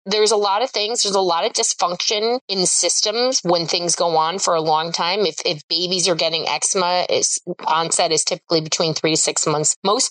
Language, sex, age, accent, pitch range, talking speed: English, female, 30-49, American, 170-250 Hz, 215 wpm